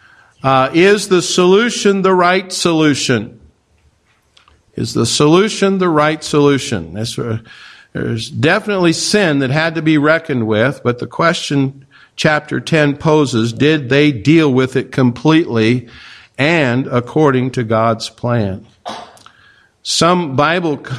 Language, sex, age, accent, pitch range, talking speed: English, male, 50-69, American, 125-165 Hz, 120 wpm